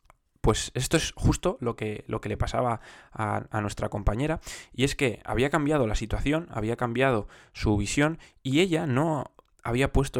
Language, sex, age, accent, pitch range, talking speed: Spanish, male, 20-39, Spanish, 105-130 Hz, 170 wpm